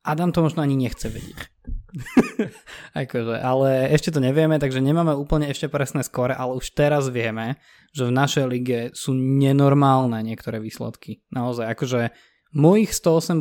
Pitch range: 120-140 Hz